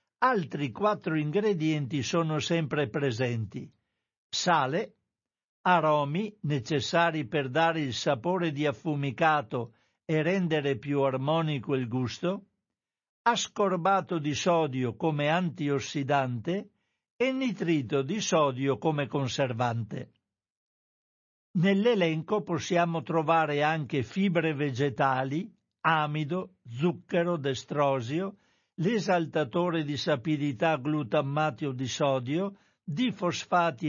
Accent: native